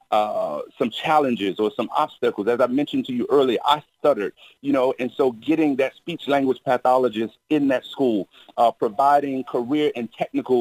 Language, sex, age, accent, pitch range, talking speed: English, male, 40-59, American, 125-190 Hz, 170 wpm